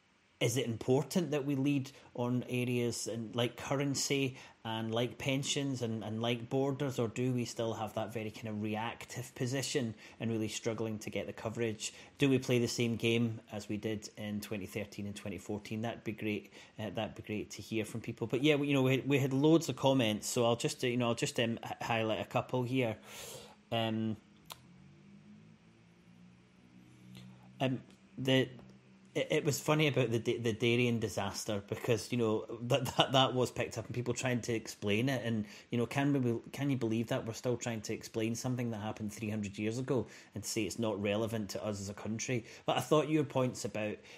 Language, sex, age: English, male, 30-49